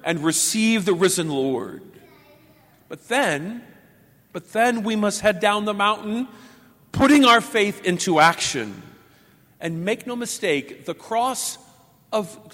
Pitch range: 160-215 Hz